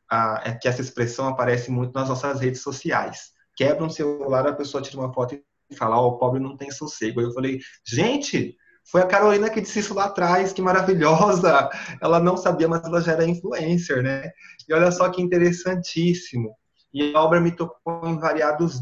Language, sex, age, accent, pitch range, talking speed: Portuguese, male, 20-39, Brazilian, 125-165 Hz, 195 wpm